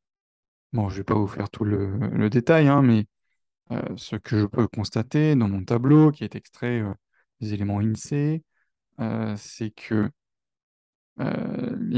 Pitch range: 110-130 Hz